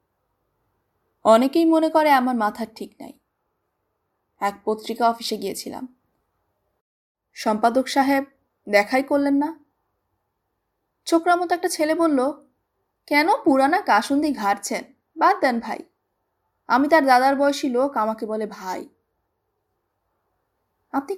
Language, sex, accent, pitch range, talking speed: Hindi, female, native, 215-285 Hz, 75 wpm